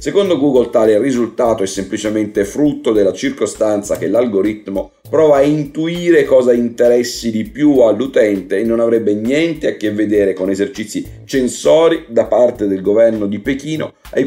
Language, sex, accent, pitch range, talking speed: Italian, male, native, 110-145 Hz, 150 wpm